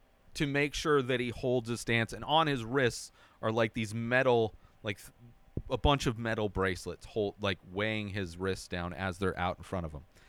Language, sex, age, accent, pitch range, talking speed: English, male, 40-59, American, 95-130 Hz, 210 wpm